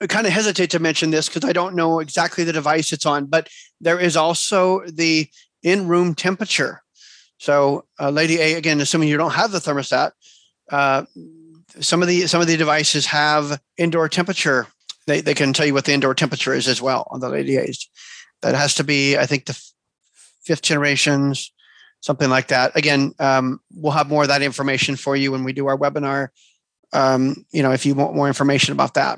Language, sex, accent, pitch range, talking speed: English, male, American, 145-175 Hz, 205 wpm